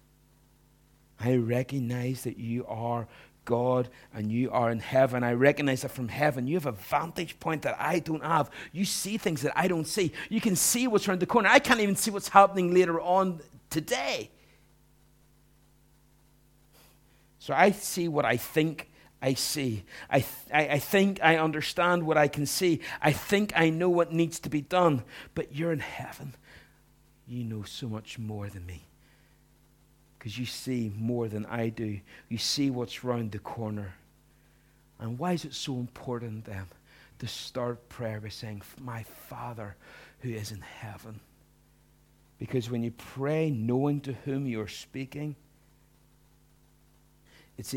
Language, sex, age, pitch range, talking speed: English, male, 50-69, 110-155 Hz, 160 wpm